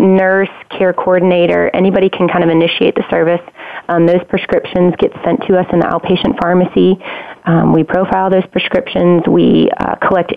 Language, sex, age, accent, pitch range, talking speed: English, female, 30-49, American, 165-185 Hz, 170 wpm